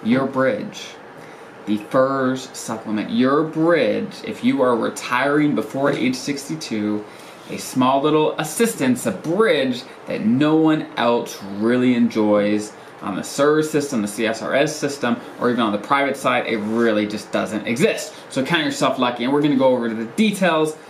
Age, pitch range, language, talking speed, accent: 20-39, 115-155 Hz, English, 165 wpm, American